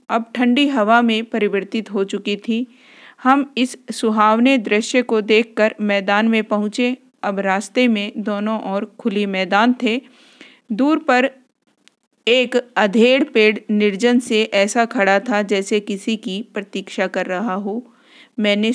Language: Hindi